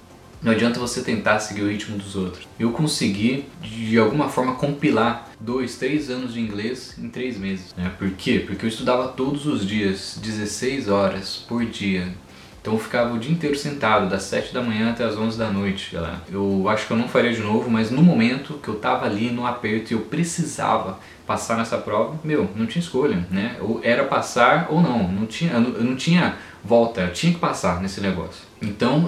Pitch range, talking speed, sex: 100-145 Hz, 200 wpm, male